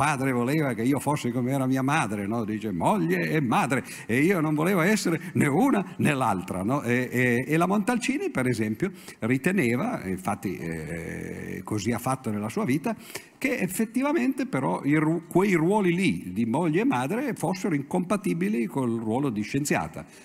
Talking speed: 170 wpm